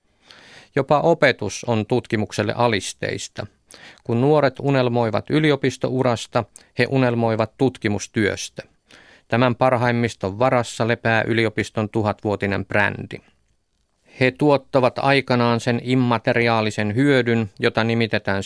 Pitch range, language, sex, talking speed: 110-125 Hz, Finnish, male, 90 wpm